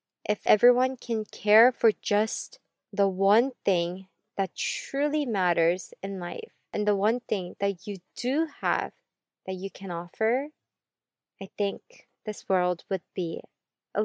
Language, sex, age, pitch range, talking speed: English, female, 20-39, 190-230 Hz, 140 wpm